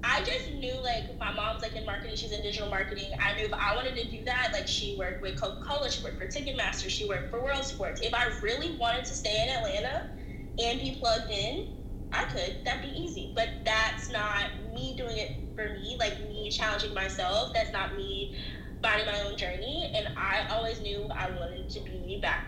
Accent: American